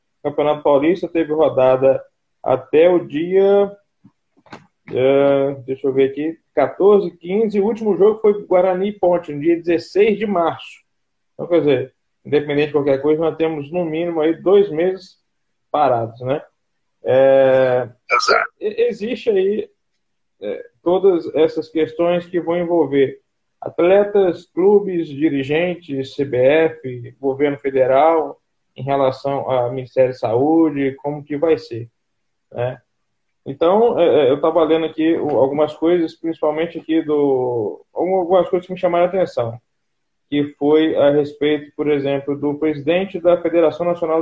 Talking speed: 130 wpm